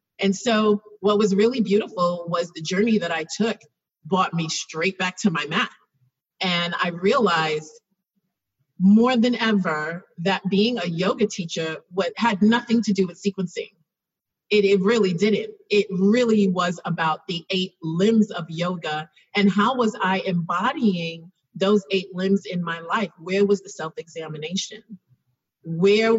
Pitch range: 170-205 Hz